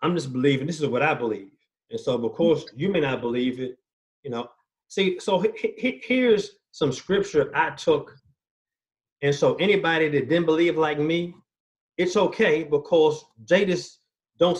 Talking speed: 170 wpm